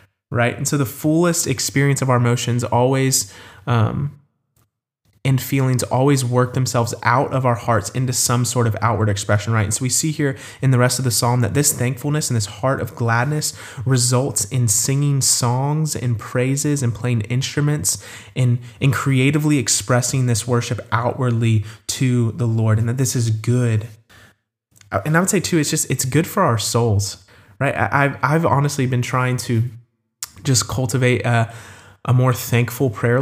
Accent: American